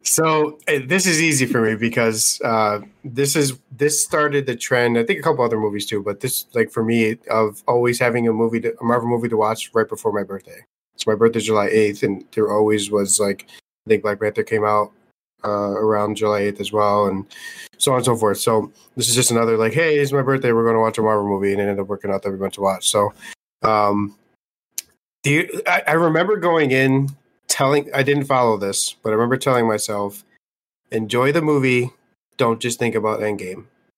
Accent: American